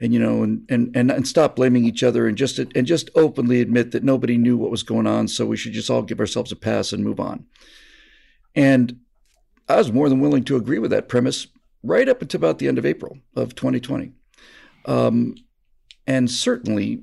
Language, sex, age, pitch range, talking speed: English, male, 50-69, 115-145 Hz, 210 wpm